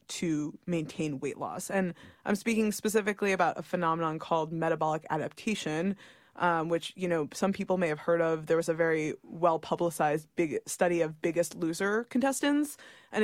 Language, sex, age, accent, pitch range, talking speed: English, female, 20-39, American, 165-200 Hz, 165 wpm